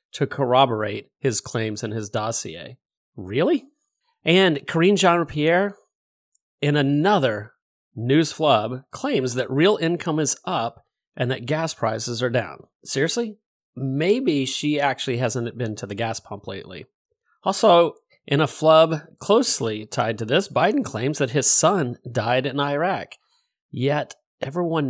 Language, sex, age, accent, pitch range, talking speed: English, male, 30-49, American, 120-155 Hz, 135 wpm